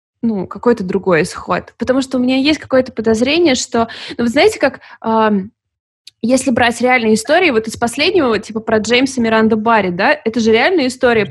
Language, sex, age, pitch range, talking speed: Russian, female, 20-39, 215-265 Hz, 180 wpm